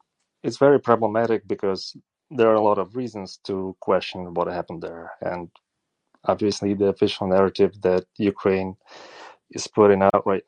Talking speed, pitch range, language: 150 wpm, 90-100 Hz, English